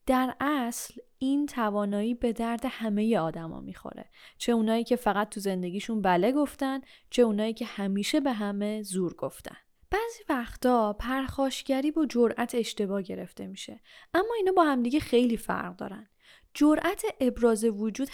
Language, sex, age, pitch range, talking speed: Persian, female, 10-29, 210-275 Hz, 140 wpm